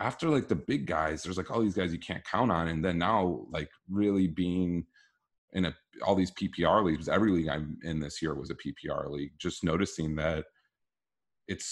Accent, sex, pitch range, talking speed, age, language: American, male, 80-100 Hz, 205 wpm, 30-49, English